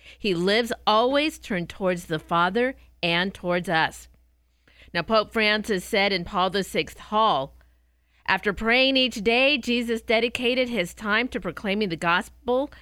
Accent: American